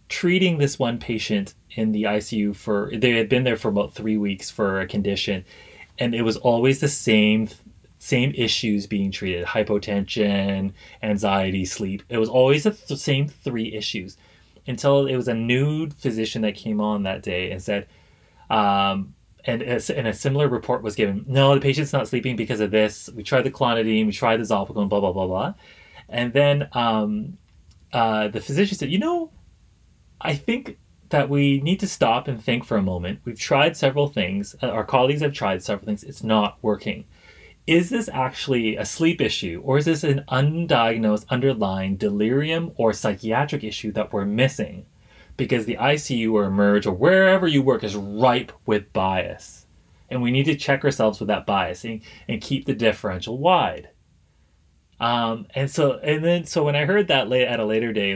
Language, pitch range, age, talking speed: English, 105-140 Hz, 30-49, 180 wpm